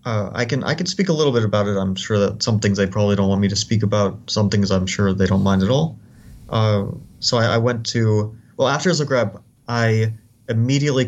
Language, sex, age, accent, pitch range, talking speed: English, male, 30-49, American, 100-120 Hz, 240 wpm